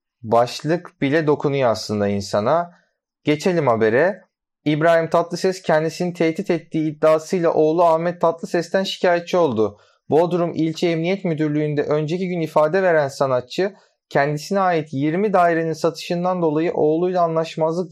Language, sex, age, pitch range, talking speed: Turkish, male, 30-49, 140-180 Hz, 115 wpm